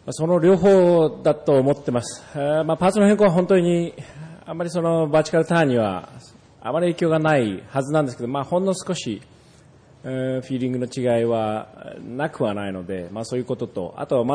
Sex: male